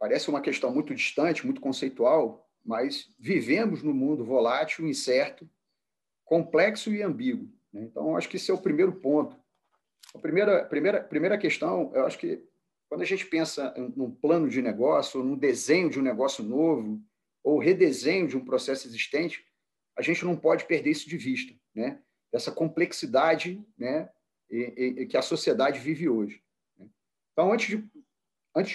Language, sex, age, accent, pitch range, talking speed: Portuguese, male, 40-59, Brazilian, 140-225 Hz, 165 wpm